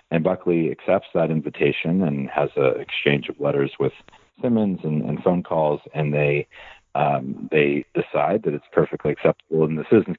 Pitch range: 70-85 Hz